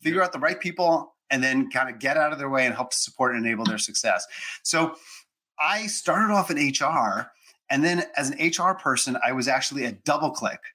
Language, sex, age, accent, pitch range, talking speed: English, male, 30-49, American, 130-170 Hz, 220 wpm